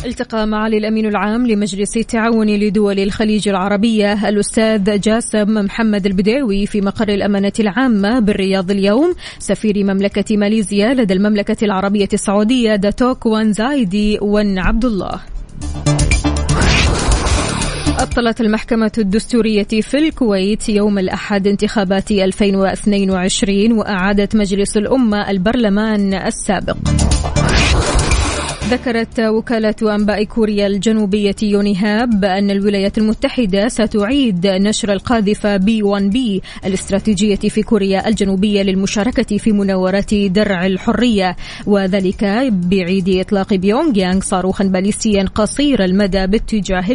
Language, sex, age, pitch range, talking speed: Arabic, female, 20-39, 195-220 Hz, 100 wpm